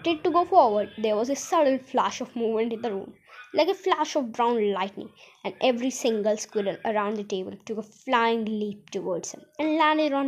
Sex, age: female, 20-39